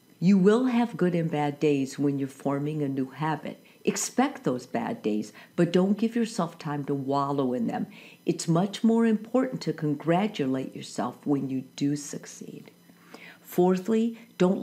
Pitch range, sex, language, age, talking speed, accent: 145-205 Hz, female, English, 50-69, 160 wpm, American